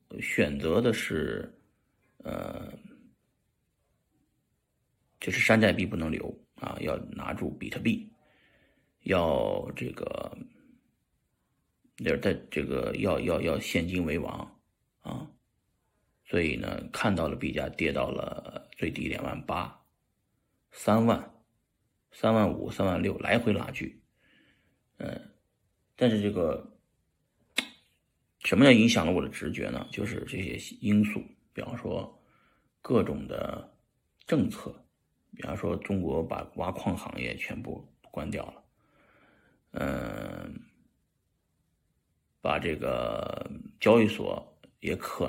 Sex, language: male, Chinese